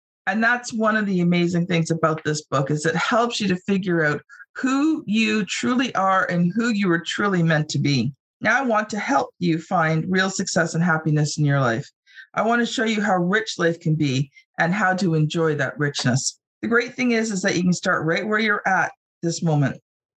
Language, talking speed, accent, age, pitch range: English, 220 wpm, American, 50-69, 165-235 Hz